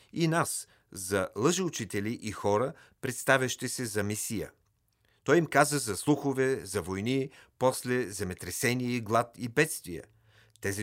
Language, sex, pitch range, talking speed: Bulgarian, male, 100-130 Hz, 135 wpm